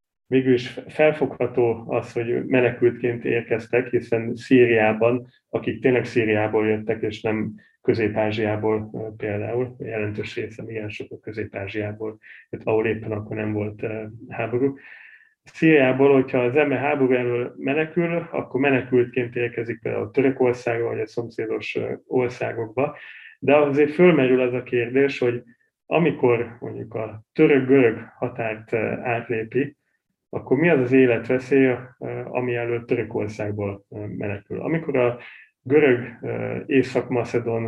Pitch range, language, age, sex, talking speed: 115-130 Hz, Hungarian, 30-49, male, 115 wpm